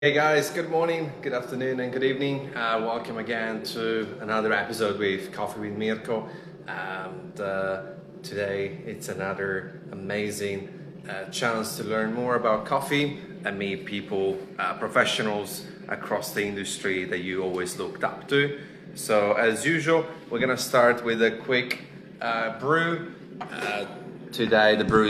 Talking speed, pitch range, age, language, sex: 145 wpm, 105-135 Hz, 20-39, English, male